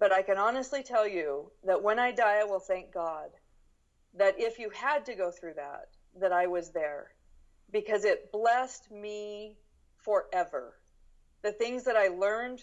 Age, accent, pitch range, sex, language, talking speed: 40-59, American, 180-230 Hz, female, English, 170 wpm